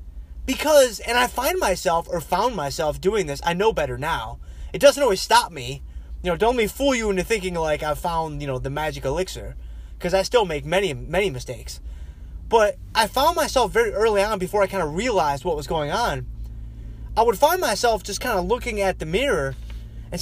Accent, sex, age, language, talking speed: American, male, 20-39, English, 210 wpm